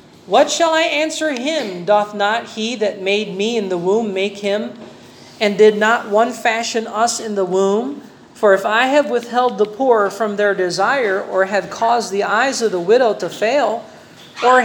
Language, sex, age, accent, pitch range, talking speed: Filipino, male, 40-59, American, 200-270 Hz, 190 wpm